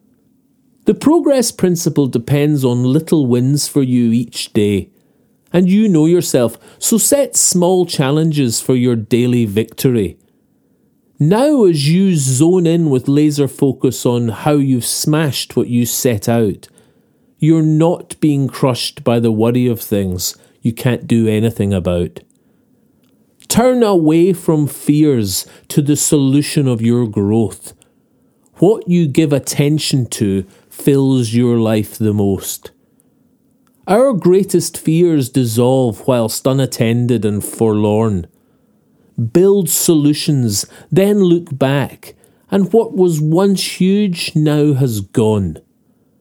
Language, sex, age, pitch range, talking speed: English, male, 40-59, 115-175 Hz, 120 wpm